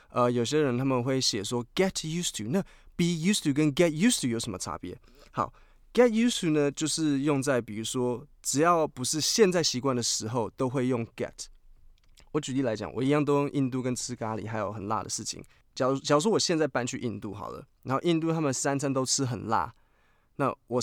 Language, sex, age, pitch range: Chinese, male, 20-39, 115-145 Hz